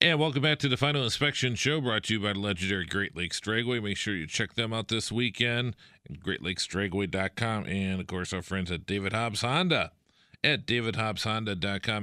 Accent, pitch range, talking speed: American, 90-110 Hz, 190 wpm